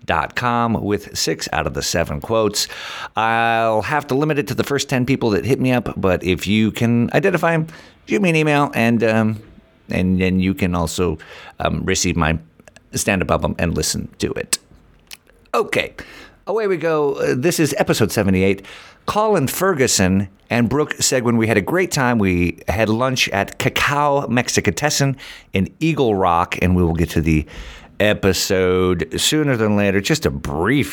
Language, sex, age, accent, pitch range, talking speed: English, male, 50-69, American, 95-135 Hz, 170 wpm